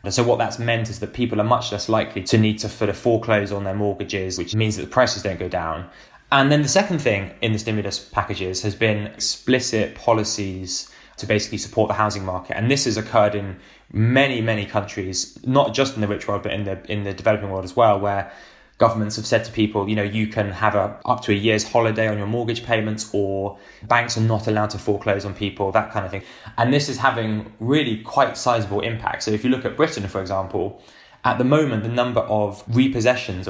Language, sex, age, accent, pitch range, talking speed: English, male, 10-29, British, 100-115 Hz, 230 wpm